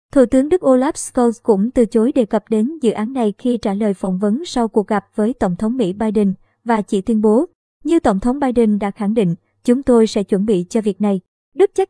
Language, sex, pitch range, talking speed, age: Vietnamese, male, 215-255 Hz, 240 wpm, 20-39